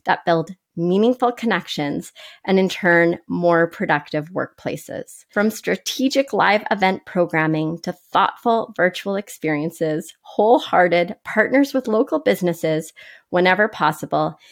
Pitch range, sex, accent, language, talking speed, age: 175-230 Hz, female, American, English, 105 wpm, 30-49